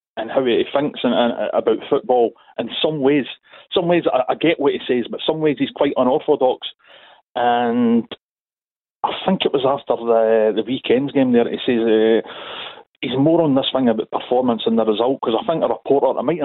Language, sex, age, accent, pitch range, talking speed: English, male, 40-59, British, 120-170 Hz, 210 wpm